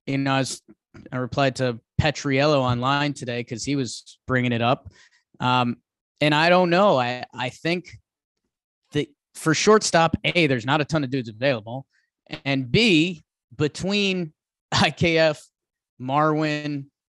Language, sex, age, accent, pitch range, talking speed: English, male, 30-49, American, 125-155 Hz, 135 wpm